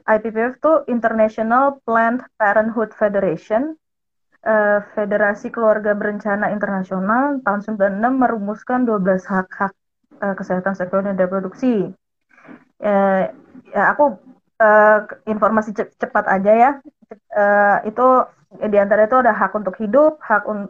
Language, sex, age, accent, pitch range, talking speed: Indonesian, female, 20-39, native, 210-245 Hz, 120 wpm